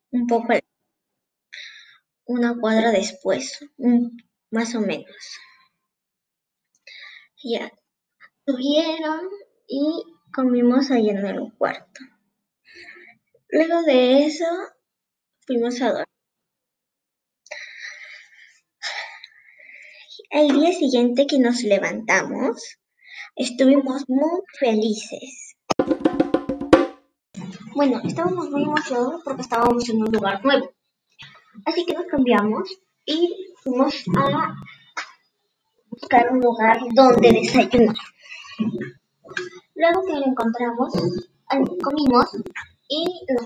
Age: 20-39